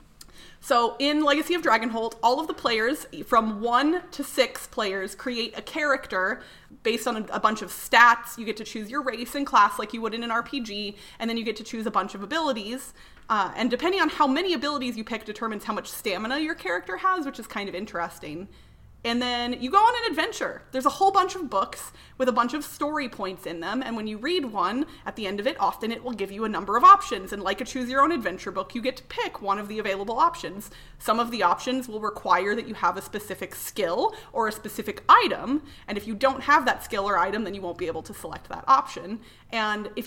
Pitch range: 205-275 Hz